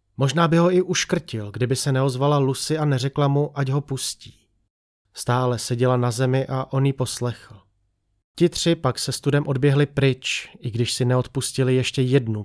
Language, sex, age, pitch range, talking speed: Czech, male, 30-49, 110-140 Hz, 170 wpm